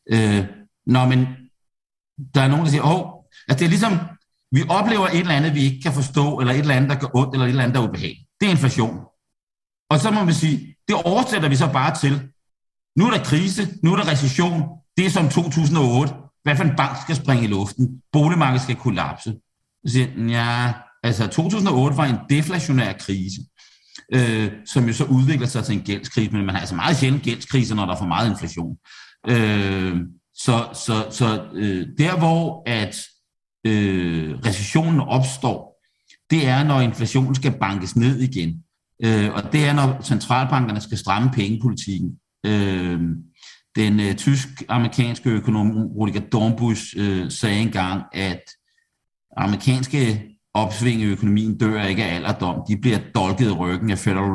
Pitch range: 105-140 Hz